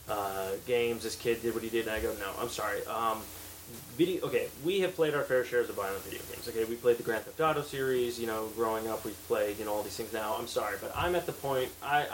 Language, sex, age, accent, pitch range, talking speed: English, male, 20-39, American, 115-145 Hz, 270 wpm